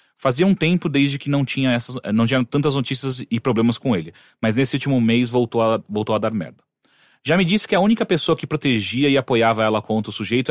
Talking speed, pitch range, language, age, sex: 235 wpm, 115-150 Hz, Portuguese, 30-49, male